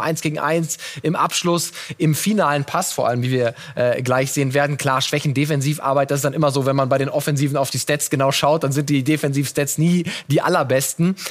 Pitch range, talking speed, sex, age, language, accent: 140-170 Hz, 220 wpm, male, 20-39, German, German